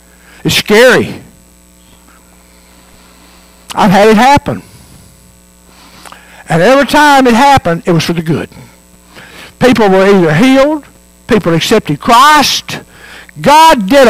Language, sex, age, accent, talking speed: English, male, 60-79, American, 105 wpm